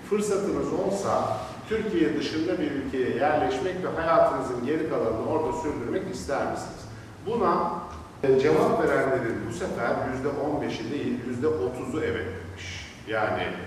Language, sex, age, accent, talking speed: Turkish, male, 50-69, native, 115 wpm